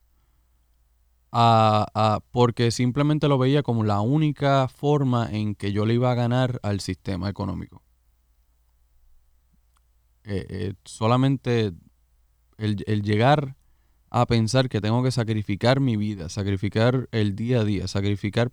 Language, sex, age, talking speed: Spanish, male, 20-39, 125 wpm